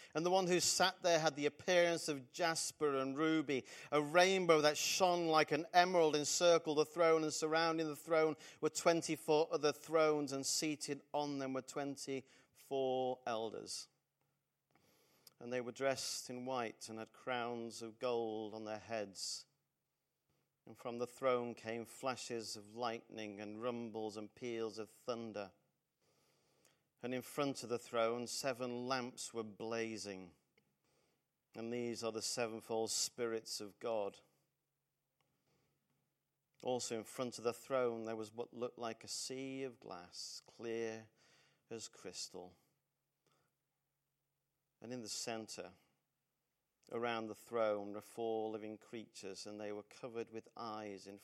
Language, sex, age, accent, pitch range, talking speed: English, male, 40-59, British, 110-145 Hz, 140 wpm